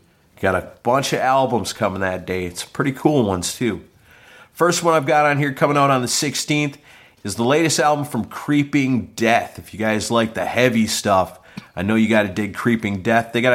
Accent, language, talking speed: American, English, 215 wpm